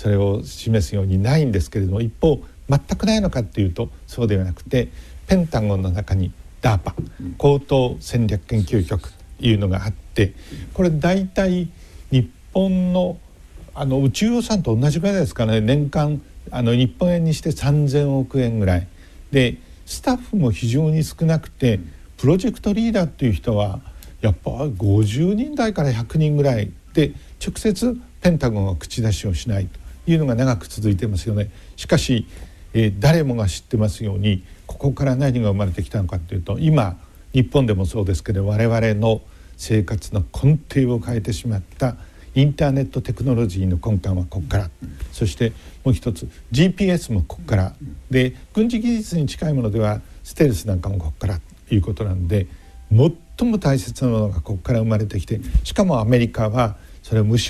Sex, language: male, Japanese